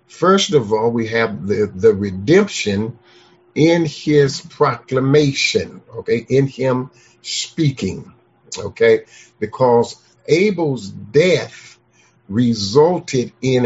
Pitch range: 120-165 Hz